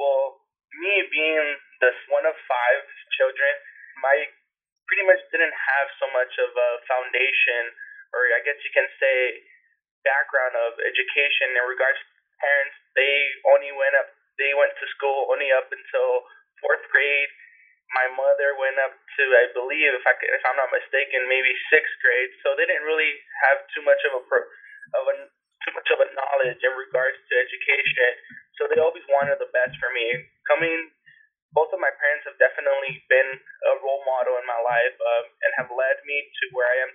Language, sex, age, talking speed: English, male, 20-39, 180 wpm